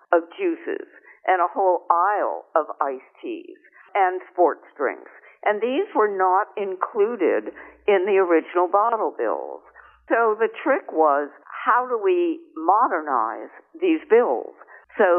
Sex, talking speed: female, 130 wpm